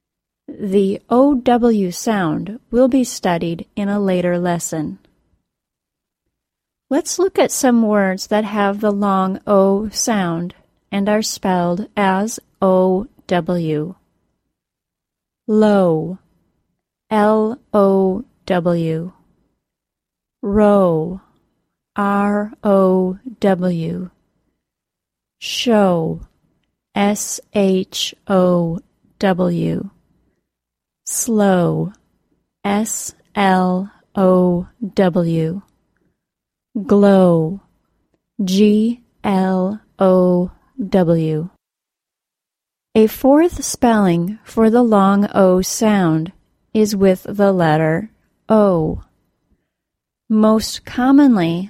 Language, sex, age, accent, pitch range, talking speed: English, female, 30-49, American, 180-220 Hz, 60 wpm